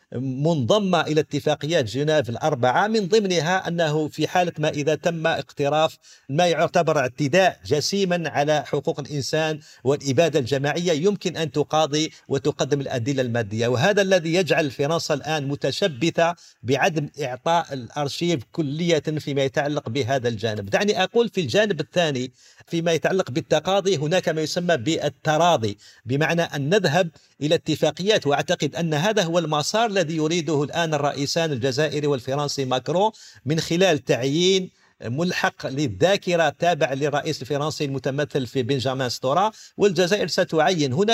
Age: 50-69